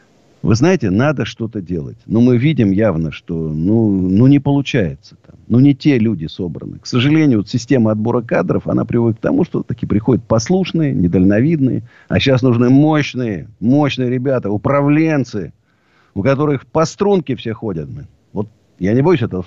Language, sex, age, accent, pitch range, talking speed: Russian, male, 50-69, native, 105-140 Hz, 165 wpm